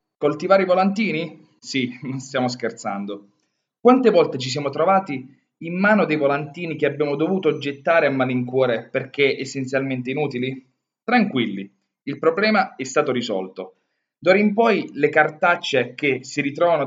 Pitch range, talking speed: 140-200 Hz, 140 wpm